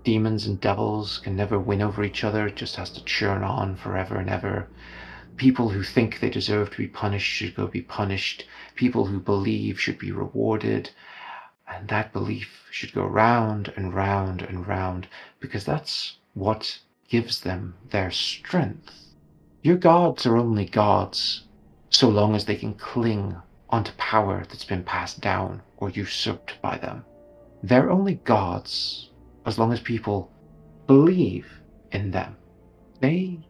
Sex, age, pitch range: male, 30-49, 90-115 Hz